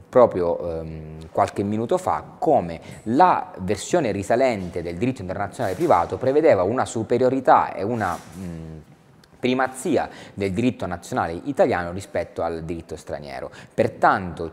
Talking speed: 120 wpm